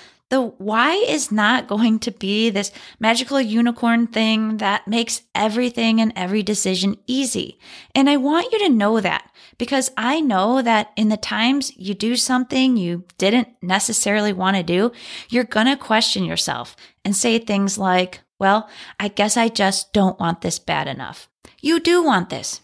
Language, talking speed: English, 170 wpm